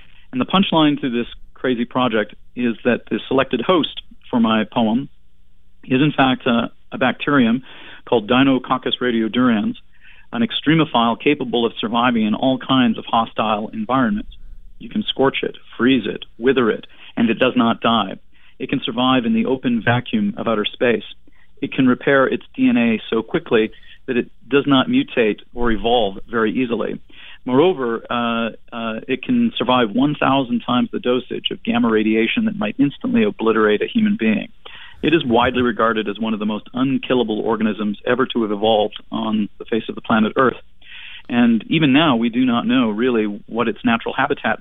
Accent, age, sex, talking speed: American, 40-59, male, 170 wpm